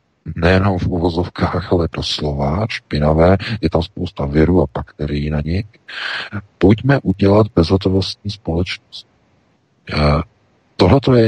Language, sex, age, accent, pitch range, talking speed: Czech, male, 50-69, native, 80-100 Hz, 110 wpm